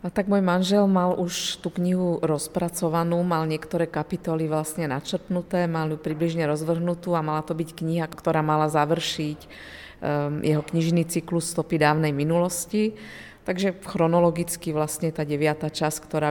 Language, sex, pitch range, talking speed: Slovak, female, 150-170 Hz, 145 wpm